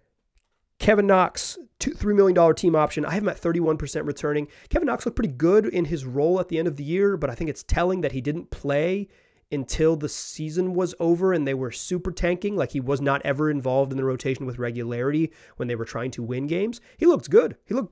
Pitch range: 135-185 Hz